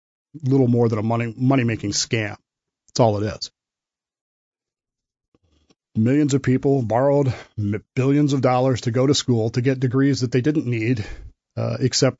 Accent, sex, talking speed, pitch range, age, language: American, male, 150 wpm, 115-135 Hz, 40-59, English